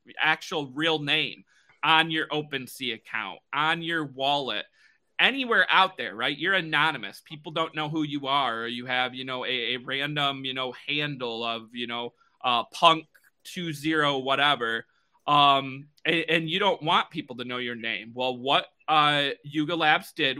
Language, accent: English, American